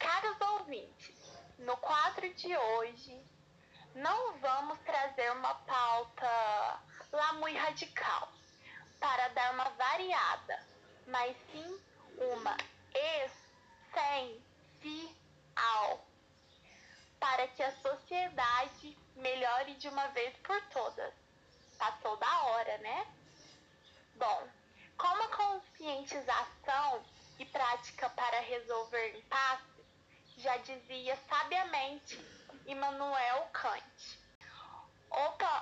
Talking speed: 85 wpm